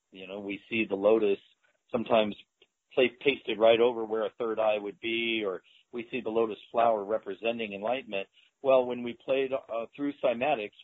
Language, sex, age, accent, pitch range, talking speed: English, male, 50-69, American, 105-125 Hz, 170 wpm